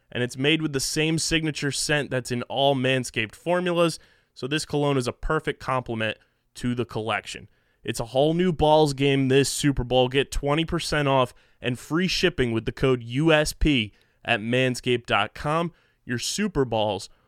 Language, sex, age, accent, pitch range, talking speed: English, male, 20-39, American, 120-145 Hz, 165 wpm